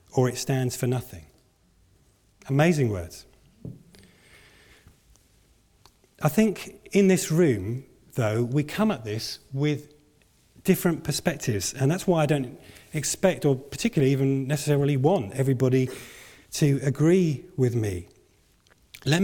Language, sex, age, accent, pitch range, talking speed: English, male, 40-59, British, 130-180 Hz, 115 wpm